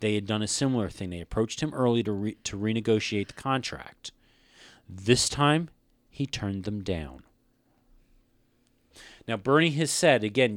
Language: English